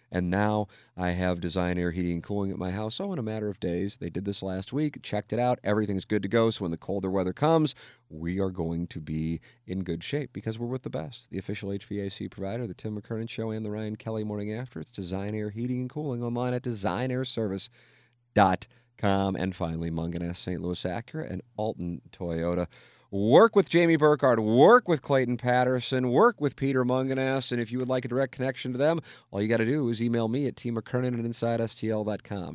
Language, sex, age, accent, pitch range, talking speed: English, male, 40-59, American, 95-130 Hz, 210 wpm